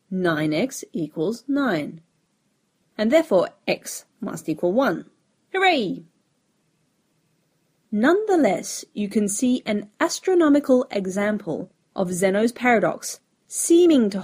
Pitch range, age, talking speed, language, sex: 180-270 Hz, 30-49, 95 wpm, English, female